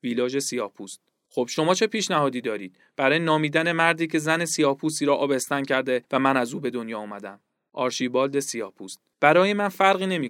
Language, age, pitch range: Persian, 40-59, 130-175 Hz